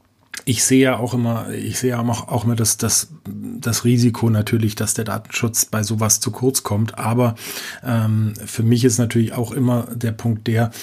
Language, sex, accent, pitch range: German, male, German, 110-125 Hz